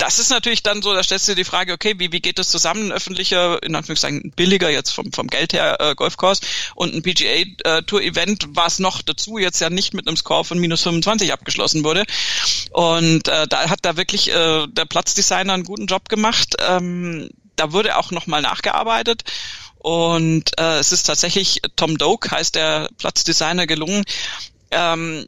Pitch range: 165-200 Hz